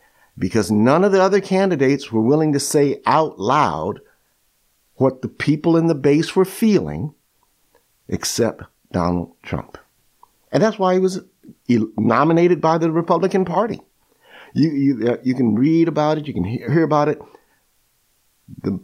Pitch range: 110-165 Hz